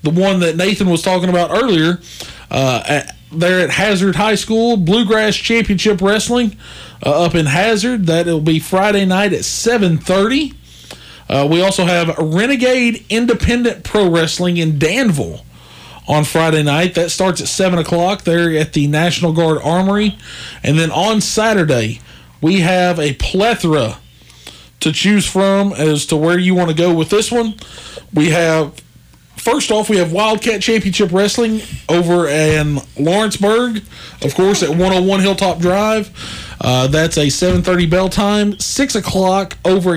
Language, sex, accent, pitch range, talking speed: English, male, American, 155-200 Hz, 150 wpm